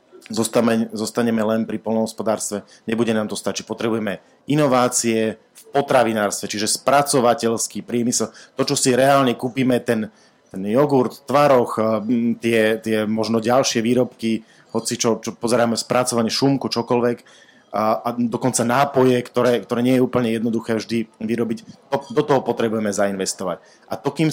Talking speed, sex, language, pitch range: 140 wpm, male, Slovak, 110-125 Hz